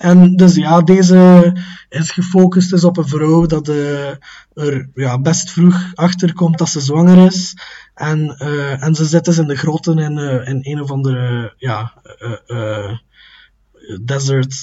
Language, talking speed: Dutch, 170 wpm